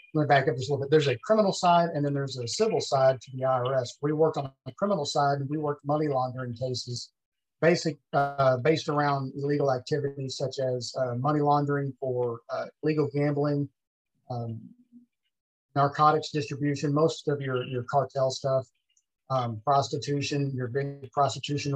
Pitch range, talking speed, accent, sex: 125-145 Hz, 170 wpm, American, male